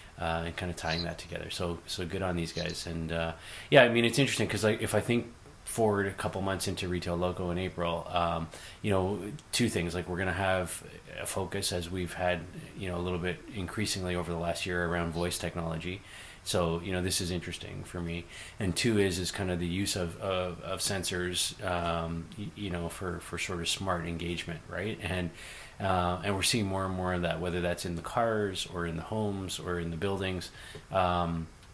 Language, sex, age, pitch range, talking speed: English, male, 30-49, 85-100 Hz, 220 wpm